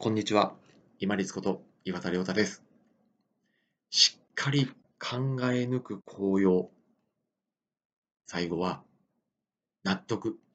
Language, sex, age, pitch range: Japanese, male, 40-59, 95-130 Hz